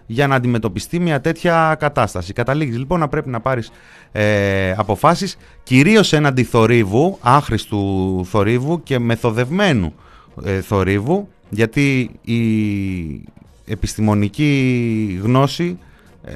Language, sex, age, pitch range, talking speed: Greek, male, 30-49, 105-145 Hz, 95 wpm